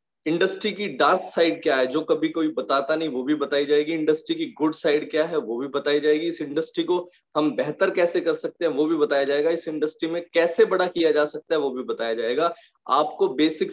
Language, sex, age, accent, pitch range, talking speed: Hindi, male, 20-39, native, 150-185 Hz, 230 wpm